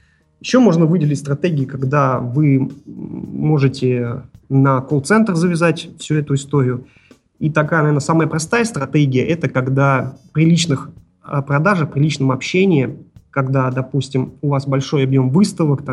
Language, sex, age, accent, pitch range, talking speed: Russian, male, 30-49, native, 135-170 Hz, 130 wpm